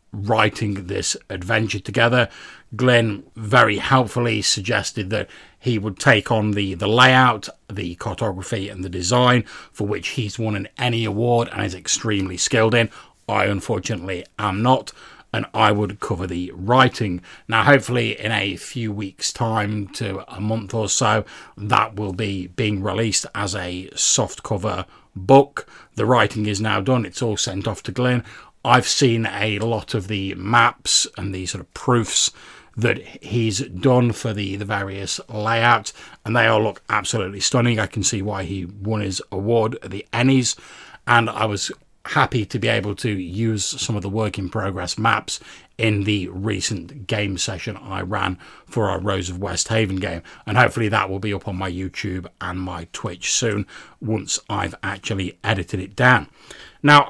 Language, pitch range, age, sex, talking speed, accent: English, 100-120 Hz, 40-59, male, 170 wpm, British